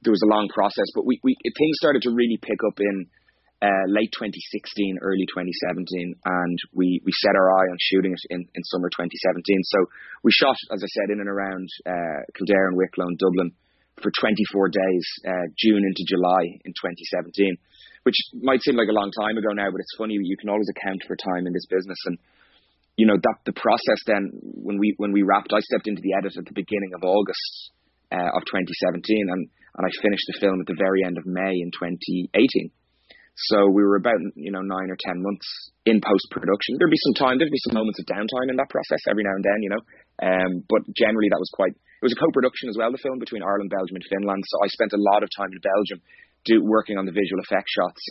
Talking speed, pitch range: 230 wpm, 95-110 Hz